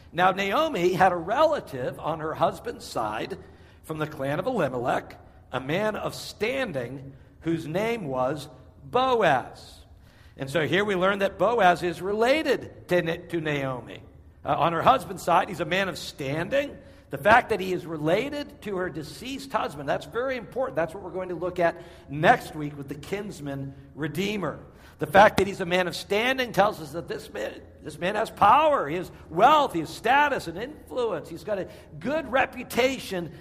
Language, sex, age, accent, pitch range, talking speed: English, male, 60-79, American, 150-225 Hz, 180 wpm